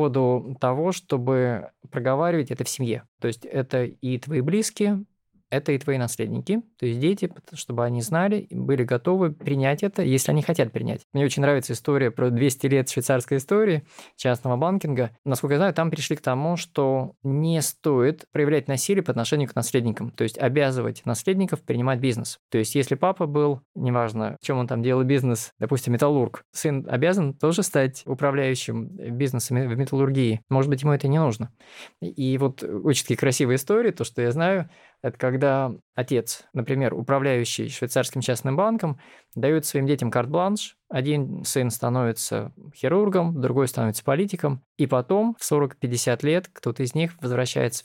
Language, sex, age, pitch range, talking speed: Russian, male, 20-39, 125-155 Hz, 160 wpm